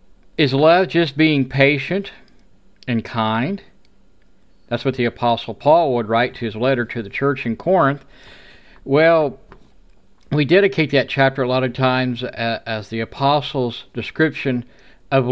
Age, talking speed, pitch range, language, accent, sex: 50-69, 140 wpm, 115-150 Hz, English, American, male